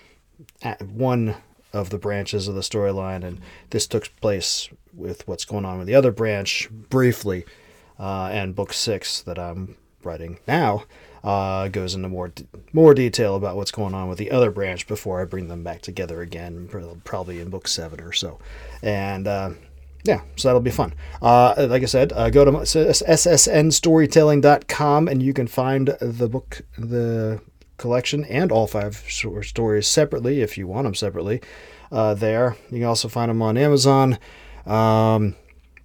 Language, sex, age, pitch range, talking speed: English, male, 30-49, 95-125 Hz, 170 wpm